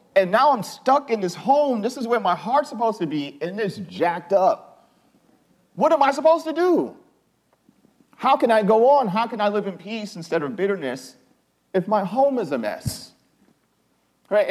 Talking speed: 190 wpm